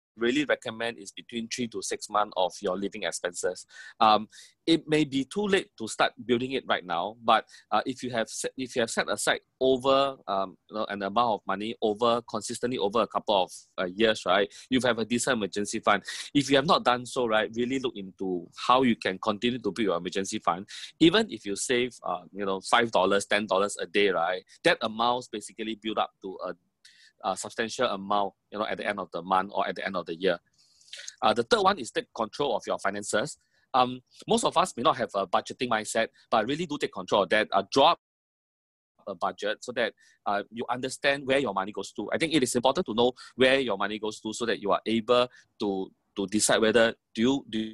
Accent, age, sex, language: Malaysian, 20-39, male, English